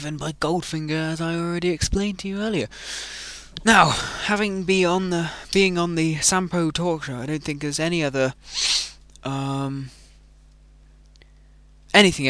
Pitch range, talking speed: 100-150 Hz, 135 wpm